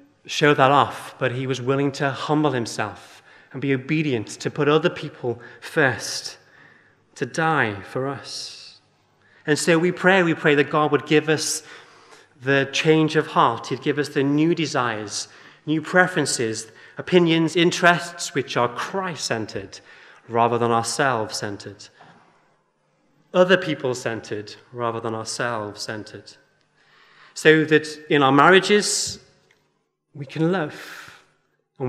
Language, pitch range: English, 130-165 Hz